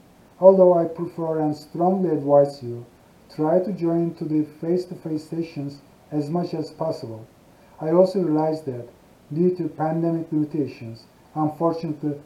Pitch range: 150-180 Hz